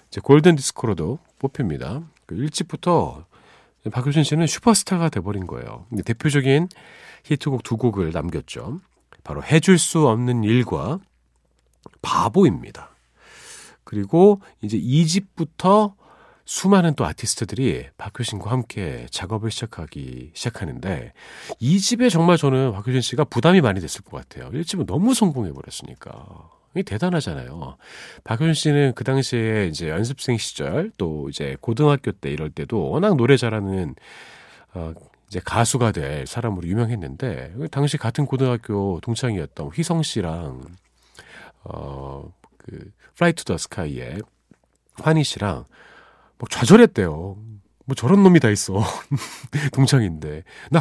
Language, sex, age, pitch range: Korean, male, 40-59, 95-155 Hz